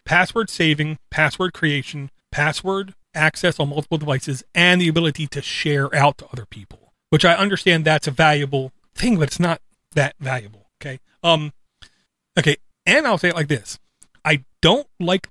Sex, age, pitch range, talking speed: male, 40-59, 135-175 Hz, 165 wpm